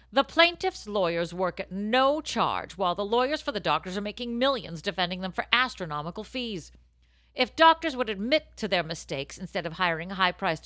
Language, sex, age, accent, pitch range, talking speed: English, female, 50-69, American, 165-250 Hz, 180 wpm